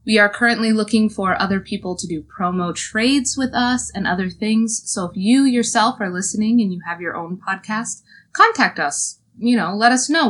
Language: English